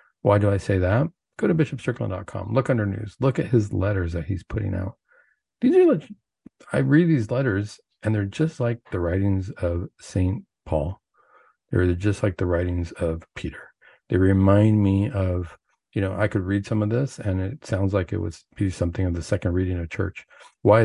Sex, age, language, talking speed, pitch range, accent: male, 50-69, English, 195 wpm, 90-110 Hz, American